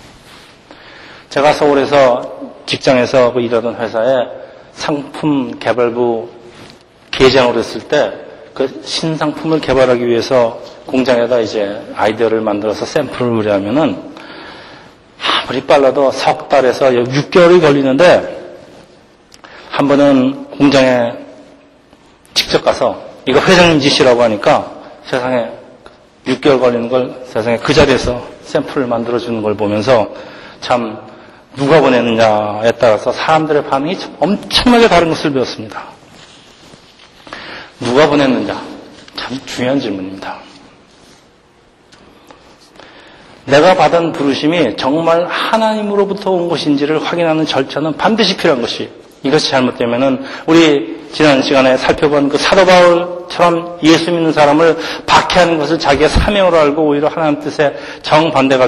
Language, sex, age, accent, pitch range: Korean, male, 40-59, native, 120-160 Hz